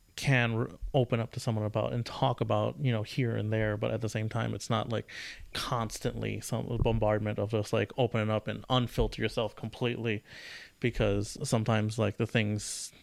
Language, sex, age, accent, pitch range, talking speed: English, male, 30-49, American, 110-120 Hz, 180 wpm